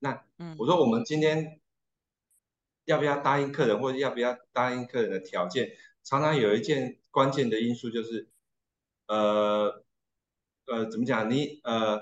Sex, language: male, Chinese